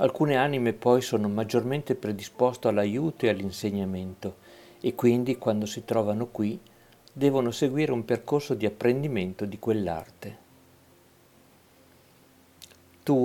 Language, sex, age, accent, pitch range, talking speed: Italian, male, 50-69, native, 100-120 Hz, 110 wpm